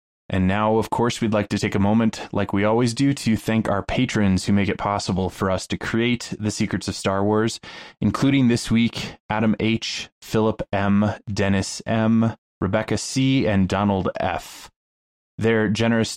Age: 20-39